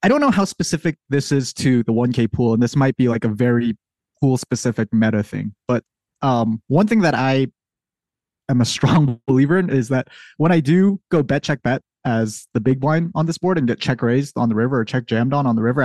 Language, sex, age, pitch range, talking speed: English, male, 20-39, 115-150 Hz, 220 wpm